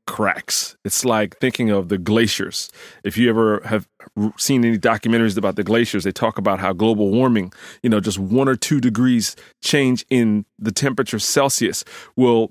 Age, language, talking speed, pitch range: 30-49, English, 175 wpm, 100-125 Hz